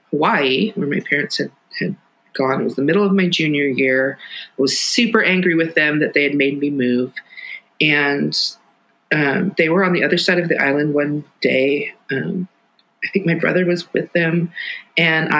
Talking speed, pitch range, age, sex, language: 190 wpm, 135-185 Hz, 30-49, female, English